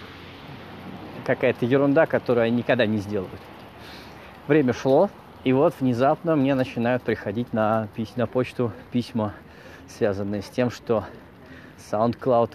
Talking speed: 110 wpm